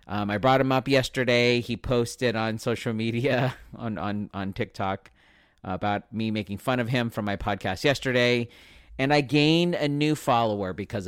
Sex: male